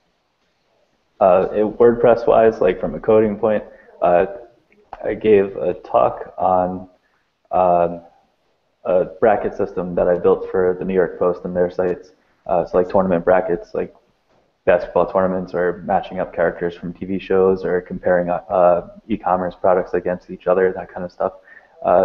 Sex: male